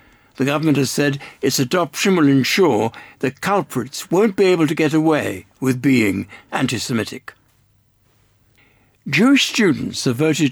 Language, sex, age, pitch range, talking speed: English, male, 60-79, 130-170 Hz, 130 wpm